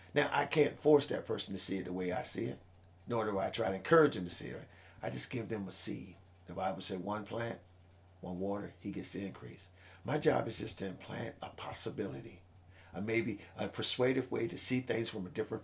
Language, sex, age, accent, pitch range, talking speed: English, male, 50-69, American, 90-120 Hz, 225 wpm